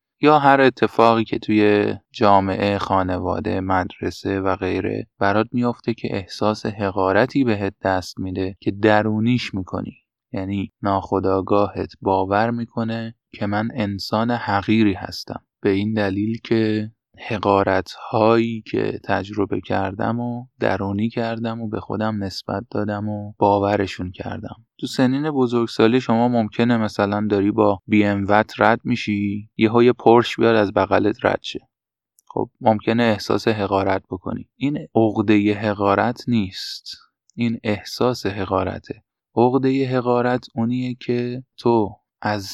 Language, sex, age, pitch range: Persian, male, 20-39, 100-115 Hz